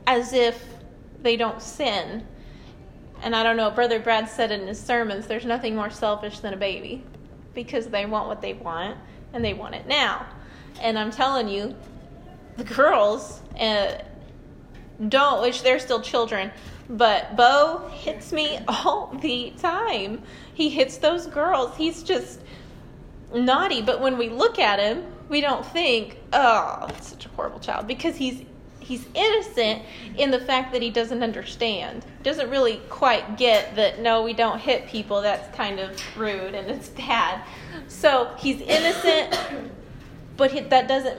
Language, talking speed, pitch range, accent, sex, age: English, 155 wpm, 220-260 Hz, American, female, 30-49